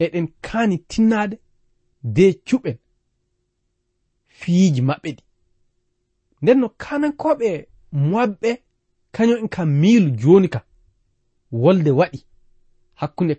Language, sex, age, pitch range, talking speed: English, male, 40-59, 120-195 Hz, 85 wpm